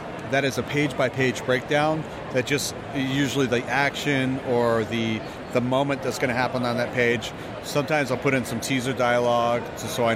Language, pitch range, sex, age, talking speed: English, 125-145 Hz, male, 40-59, 190 wpm